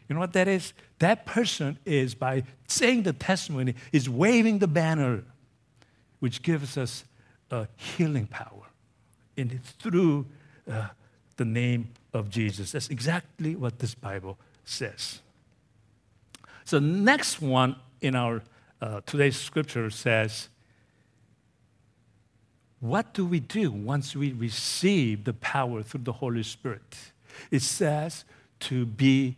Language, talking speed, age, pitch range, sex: English, 125 wpm, 60-79, 115-150 Hz, male